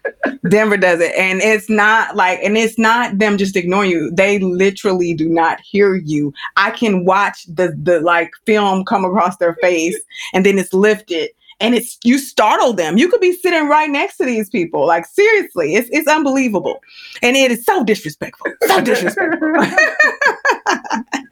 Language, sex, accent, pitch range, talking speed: English, female, American, 175-225 Hz, 170 wpm